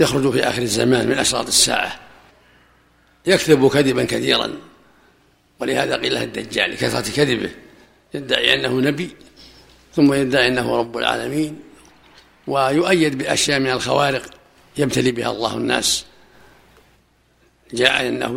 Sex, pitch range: male, 120-145 Hz